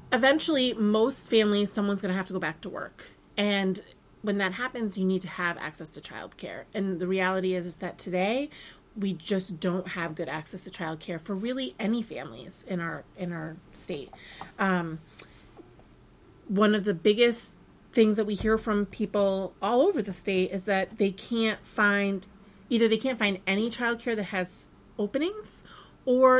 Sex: female